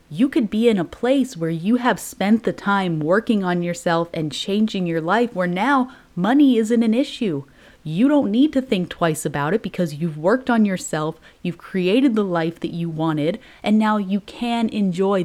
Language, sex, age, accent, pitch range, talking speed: English, female, 30-49, American, 170-230 Hz, 195 wpm